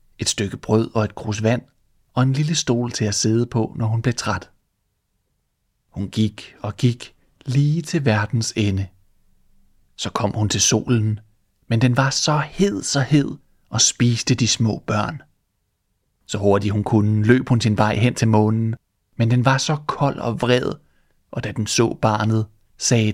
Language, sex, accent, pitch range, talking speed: Danish, male, native, 105-130 Hz, 175 wpm